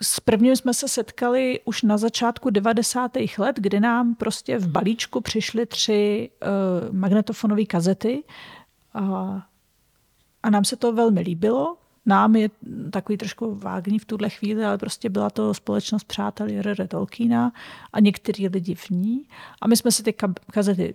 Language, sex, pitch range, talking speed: Czech, female, 195-230 Hz, 155 wpm